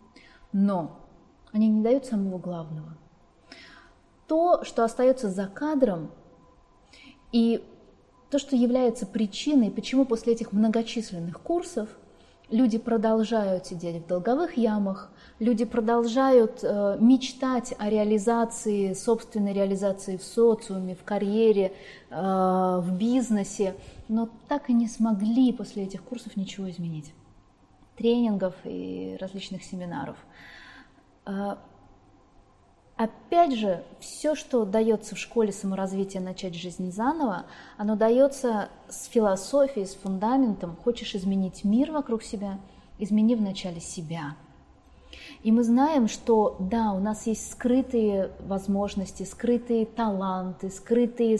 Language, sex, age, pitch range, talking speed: Russian, female, 20-39, 190-235 Hz, 105 wpm